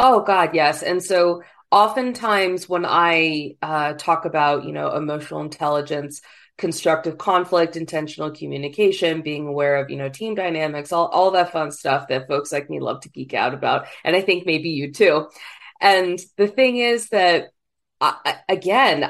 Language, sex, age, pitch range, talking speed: English, female, 20-39, 155-185 Hz, 165 wpm